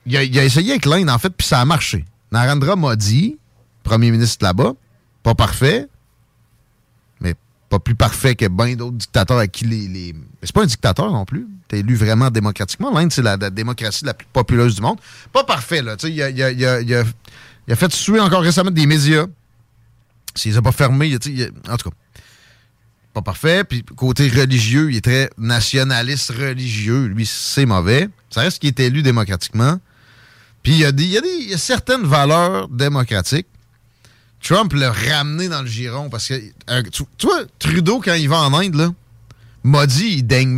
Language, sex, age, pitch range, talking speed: French, male, 30-49, 115-145 Hz, 195 wpm